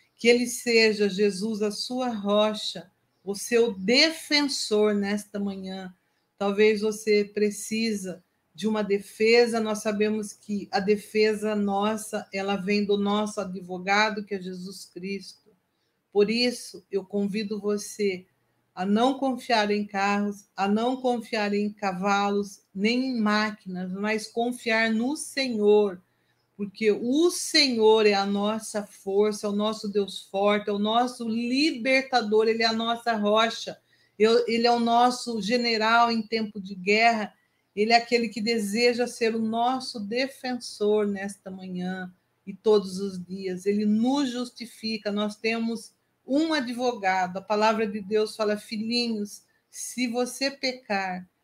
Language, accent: Portuguese, Brazilian